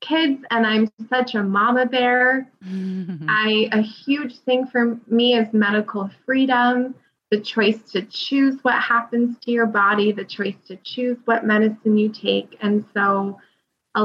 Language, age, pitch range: English, 20-39, 210-250 Hz